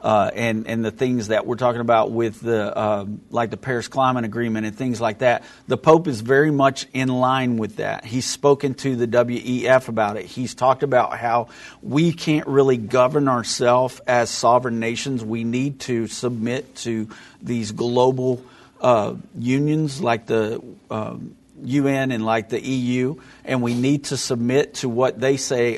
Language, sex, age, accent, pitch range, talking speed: English, male, 50-69, American, 115-135 Hz, 170 wpm